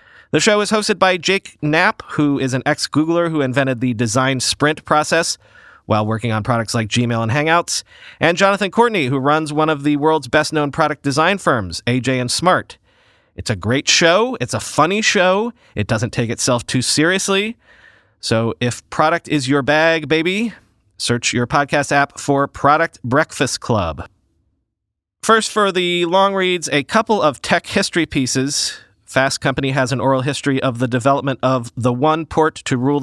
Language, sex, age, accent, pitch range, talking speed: English, male, 30-49, American, 130-175 Hz, 175 wpm